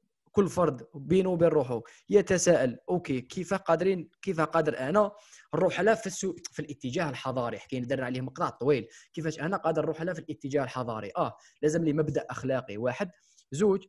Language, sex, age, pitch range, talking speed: Arabic, male, 20-39, 130-175 Hz, 160 wpm